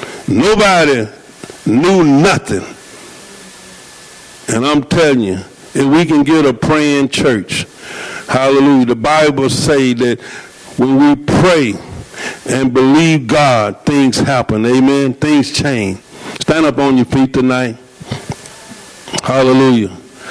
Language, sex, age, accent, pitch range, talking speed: English, male, 60-79, American, 140-195 Hz, 110 wpm